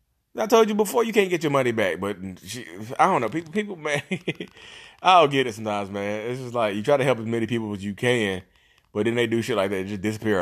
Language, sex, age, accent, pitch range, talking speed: English, male, 30-49, American, 95-130 Hz, 270 wpm